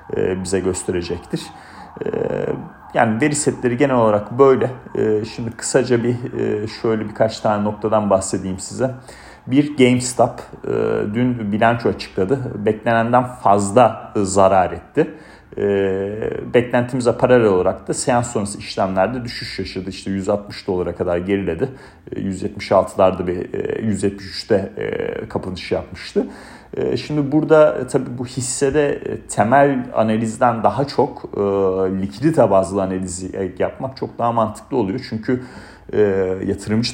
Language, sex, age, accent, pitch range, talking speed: Turkish, male, 40-59, native, 100-125 Hz, 105 wpm